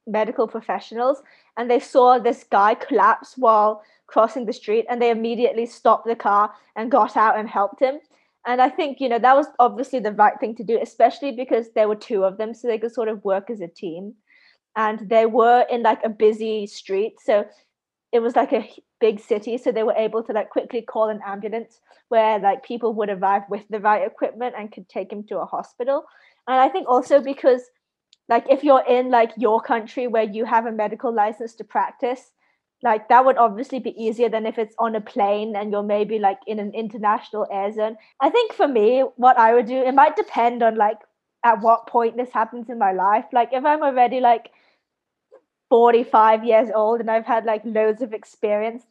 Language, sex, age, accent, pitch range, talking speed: English, female, 20-39, British, 215-250 Hz, 210 wpm